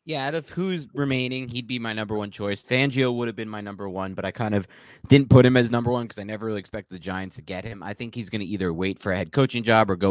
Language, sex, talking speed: English, male, 310 wpm